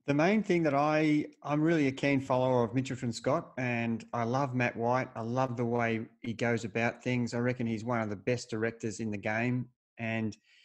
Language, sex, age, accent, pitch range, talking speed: English, male, 30-49, Australian, 115-135 Hz, 215 wpm